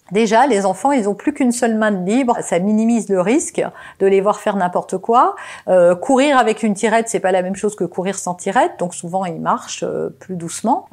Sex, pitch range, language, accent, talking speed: female, 195-275 Hz, French, French, 230 wpm